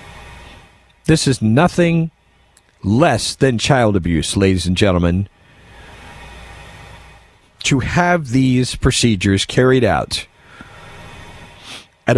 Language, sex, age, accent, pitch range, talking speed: English, male, 40-59, American, 100-140 Hz, 85 wpm